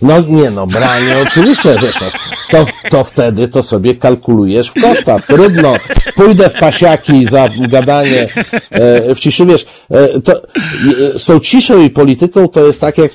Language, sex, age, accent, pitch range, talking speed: Polish, male, 50-69, native, 110-155 Hz, 145 wpm